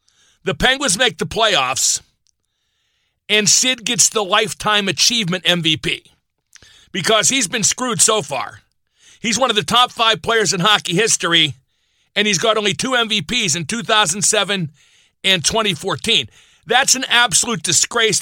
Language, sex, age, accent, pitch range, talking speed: English, male, 50-69, American, 180-225 Hz, 140 wpm